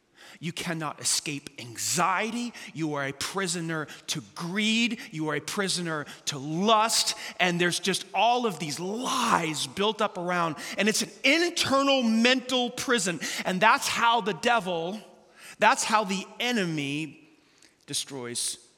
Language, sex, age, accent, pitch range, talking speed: English, male, 30-49, American, 140-180 Hz, 135 wpm